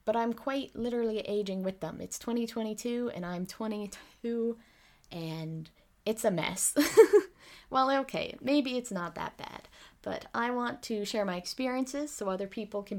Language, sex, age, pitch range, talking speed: English, female, 20-39, 185-225 Hz, 155 wpm